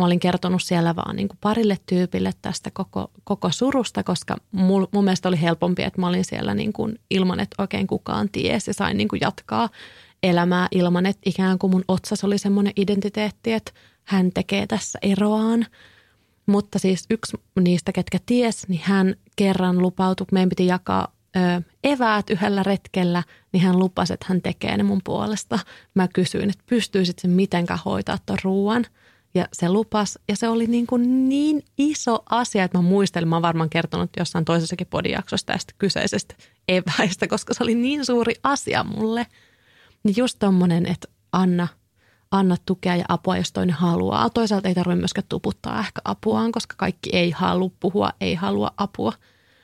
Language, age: Finnish, 30-49